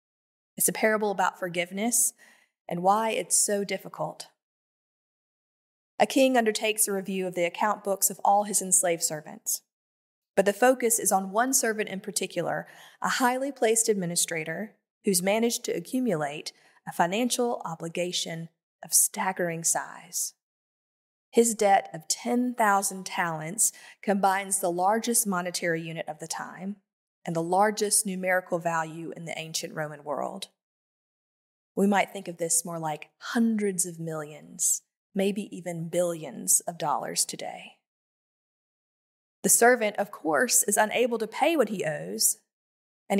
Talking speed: 135 wpm